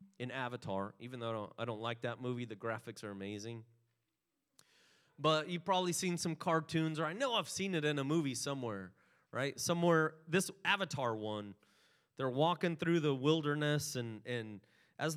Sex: male